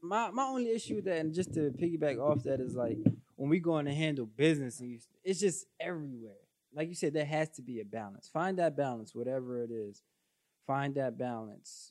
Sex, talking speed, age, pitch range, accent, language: male, 210 wpm, 20-39, 120-155 Hz, American, English